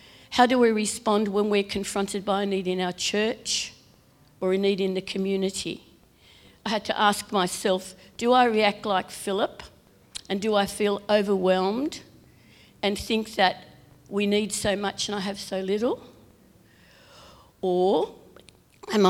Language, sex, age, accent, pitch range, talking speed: English, female, 50-69, Australian, 185-215 Hz, 150 wpm